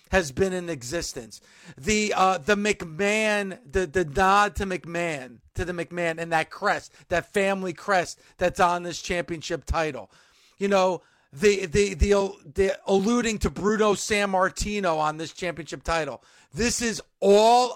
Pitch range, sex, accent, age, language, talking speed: 185-235 Hz, male, American, 40-59, English, 150 wpm